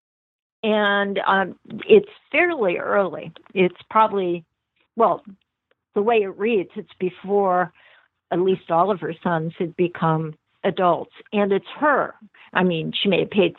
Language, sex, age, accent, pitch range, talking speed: English, female, 50-69, American, 165-205 Hz, 140 wpm